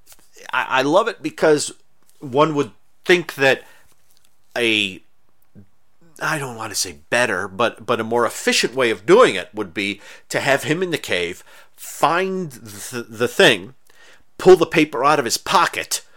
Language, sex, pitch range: English, male, 115-150 Hz